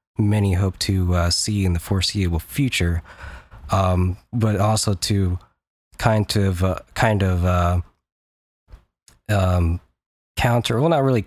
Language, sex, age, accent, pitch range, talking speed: English, male, 20-39, American, 90-105 Hz, 130 wpm